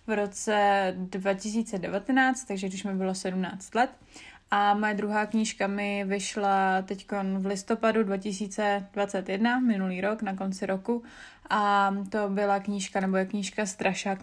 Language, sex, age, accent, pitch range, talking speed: Czech, female, 20-39, native, 195-215 Hz, 135 wpm